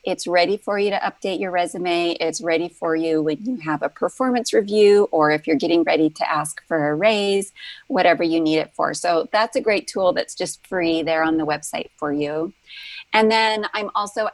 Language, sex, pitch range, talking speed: English, female, 160-205 Hz, 215 wpm